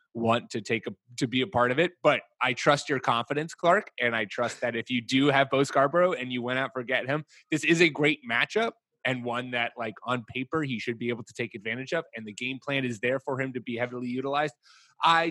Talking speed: 250 wpm